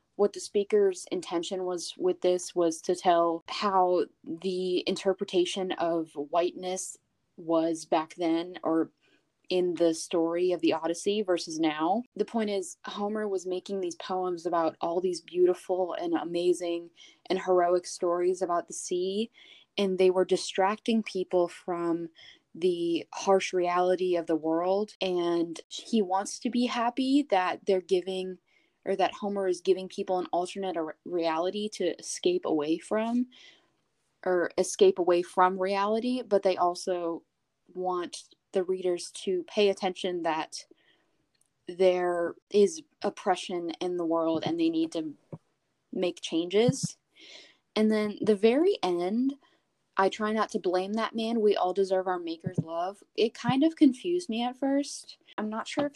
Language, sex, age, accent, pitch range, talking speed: English, female, 10-29, American, 175-215 Hz, 145 wpm